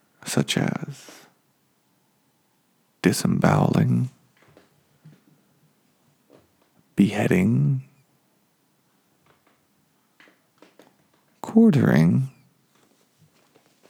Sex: male